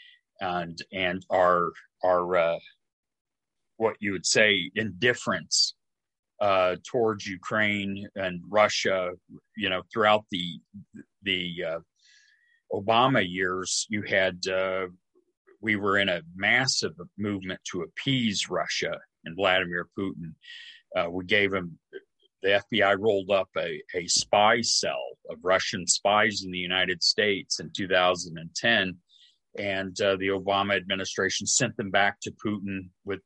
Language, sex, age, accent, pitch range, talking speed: English, male, 40-59, American, 95-120 Hz, 125 wpm